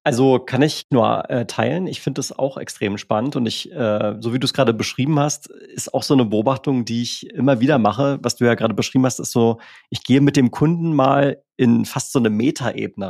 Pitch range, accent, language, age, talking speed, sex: 115-140 Hz, German, German, 30-49, 235 wpm, male